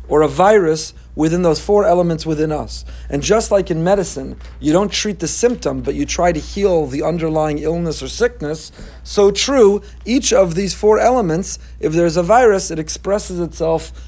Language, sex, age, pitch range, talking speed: English, male, 40-59, 145-185 Hz, 185 wpm